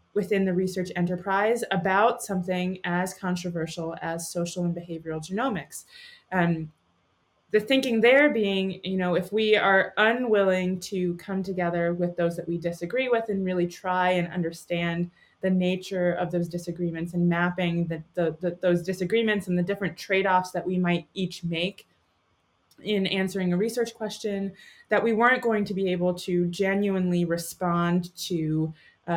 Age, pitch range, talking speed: 20-39, 175-200 Hz, 150 wpm